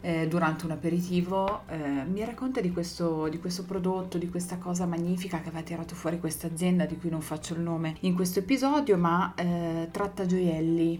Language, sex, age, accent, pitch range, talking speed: Italian, female, 30-49, native, 165-195 Hz, 185 wpm